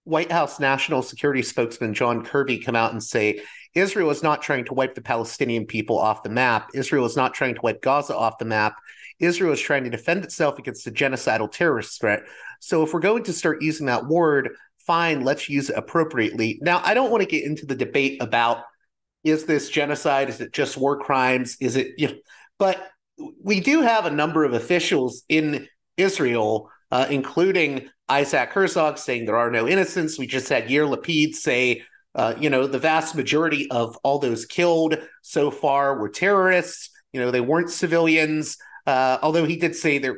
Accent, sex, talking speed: American, male, 195 wpm